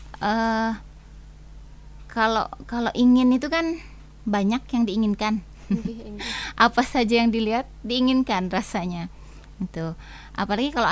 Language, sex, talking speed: Indonesian, female, 100 wpm